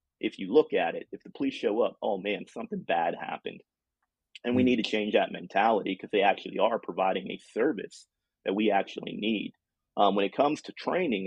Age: 30-49